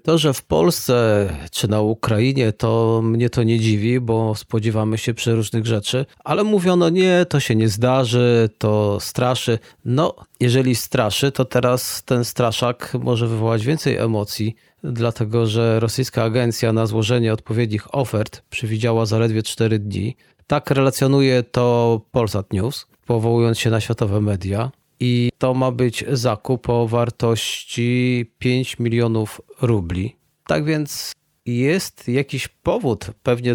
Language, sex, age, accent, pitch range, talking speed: Polish, male, 30-49, native, 110-130 Hz, 135 wpm